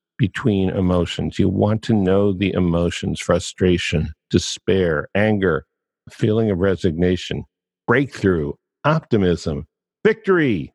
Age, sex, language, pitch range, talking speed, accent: 50-69, male, English, 90-115 Hz, 95 wpm, American